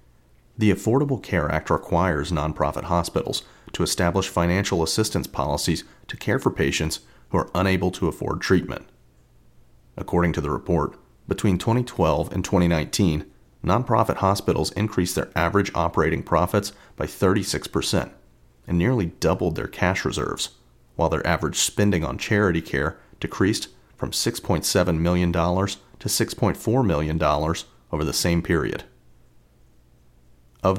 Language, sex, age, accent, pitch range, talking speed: English, male, 40-59, American, 80-100 Hz, 125 wpm